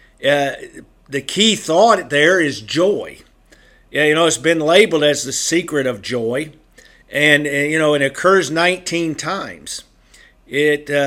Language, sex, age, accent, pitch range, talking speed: English, male, 50-69, American, 135-160 Hz, 140 wpm